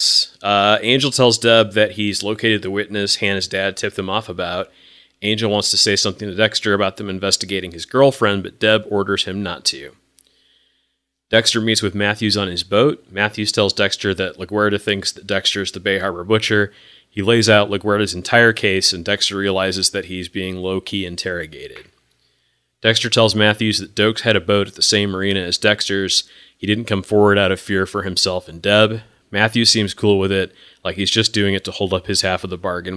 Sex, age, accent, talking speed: male, 30-49, American, 200 wpm